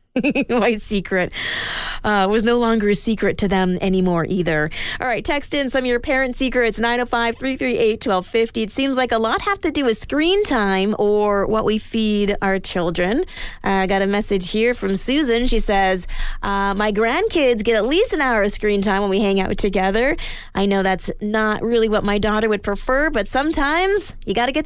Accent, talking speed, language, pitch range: American, 195 wpm, English, 200-265 Hz